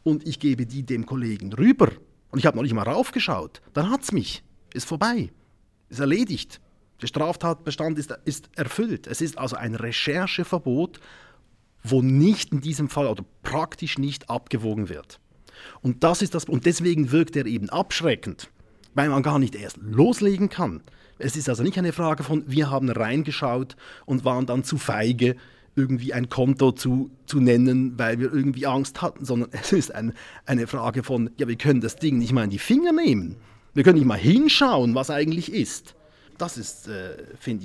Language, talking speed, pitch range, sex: German, 180 wpm, 115-155 Hz, male